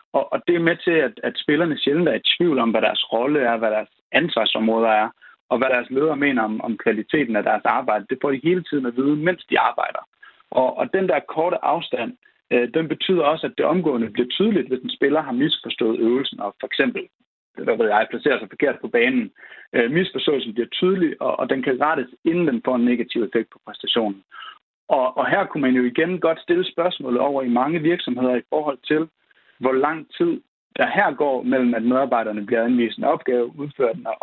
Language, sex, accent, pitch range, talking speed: Danish, male, native, 120-165 Hz, 215 wpm